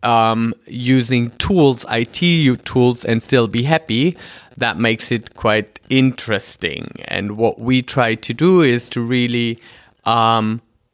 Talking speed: 130 wpm